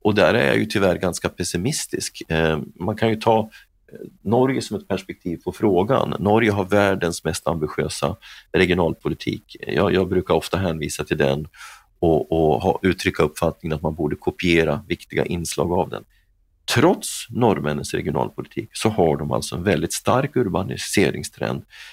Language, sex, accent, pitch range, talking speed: Swedish, male, native, 85-110 Hz, 150 wpm